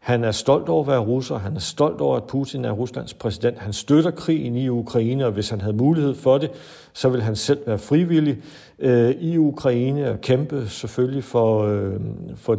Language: Danish